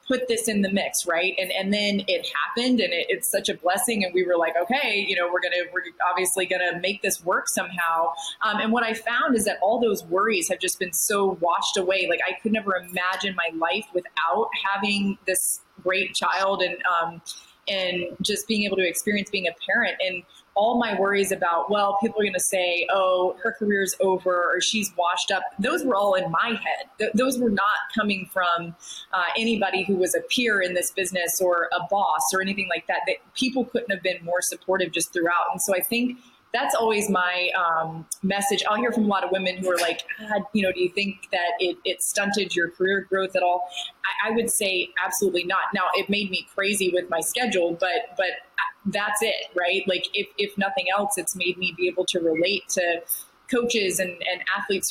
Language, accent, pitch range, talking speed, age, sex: English, American, 180-205 Hz, 215 wpm, 20-39, female